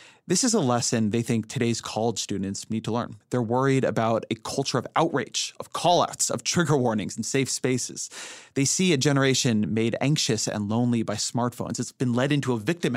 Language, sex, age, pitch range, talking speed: English, male, 30-49, 115-150 Hz, 200 wpm